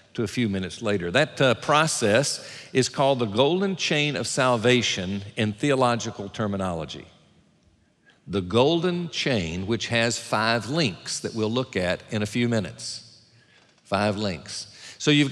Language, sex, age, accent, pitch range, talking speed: English, male, 50-69, American, 110-145 Hz, 145 wpm